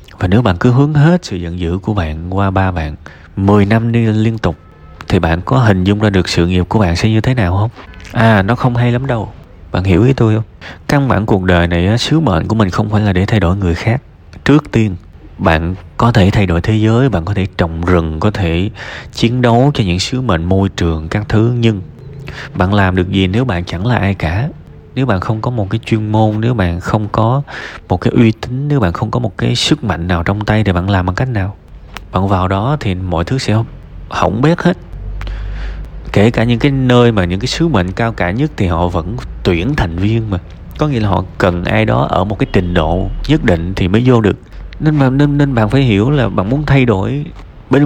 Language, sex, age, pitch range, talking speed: Vietnamese, male, 20-39, 90-120 Hz, 240 wpm